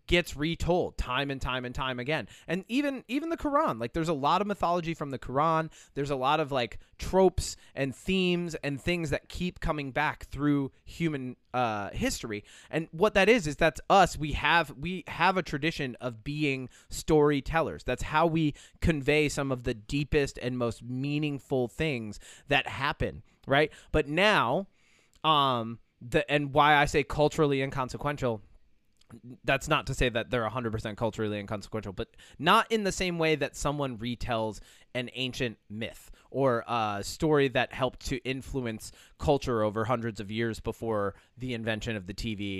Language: English